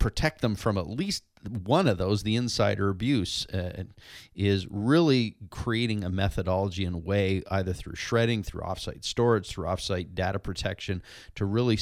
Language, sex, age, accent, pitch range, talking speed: English, male, 40-59, American, 95-115 Hz, 160 wpm